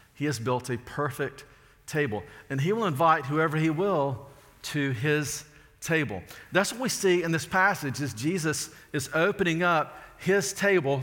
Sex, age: male, 50-69